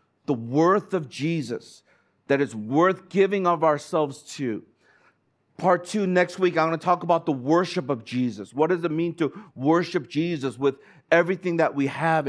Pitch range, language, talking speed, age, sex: 135-170 Hz, English, 175 wpm, 50-69, male